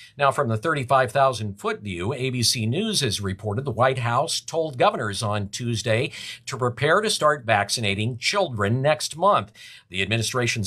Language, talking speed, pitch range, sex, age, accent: English, 150 wpm, 110-140 Hz, male, 50-69, American